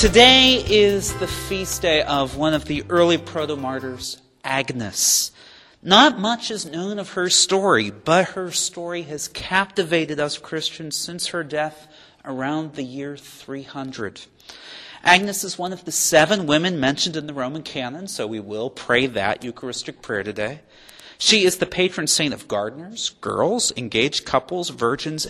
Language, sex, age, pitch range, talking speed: English, male, 40-59, 130-175 Hz, 150 wpm